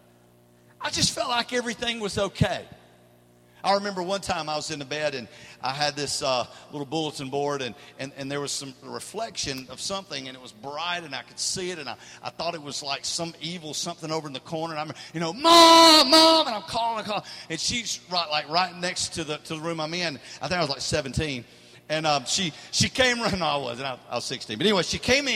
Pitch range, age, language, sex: 145-205 Hz, 50-69, English, male